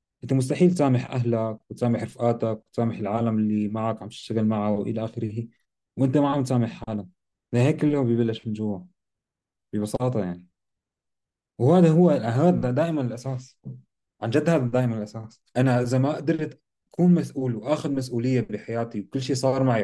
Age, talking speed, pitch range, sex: 30-49, 155 wpm, 115-140 Hz, male